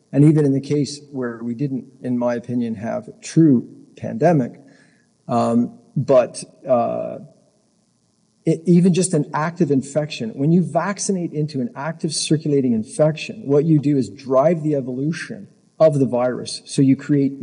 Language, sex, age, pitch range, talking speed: English, male, 50-69, 125-175 Hz, 150 wpm